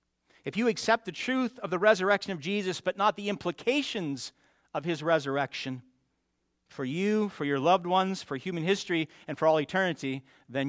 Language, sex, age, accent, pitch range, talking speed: English, male, 50-69, American, 130-185 Hz, 175 wpm